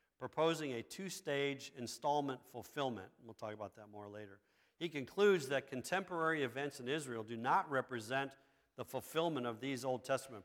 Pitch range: 115-150 Hz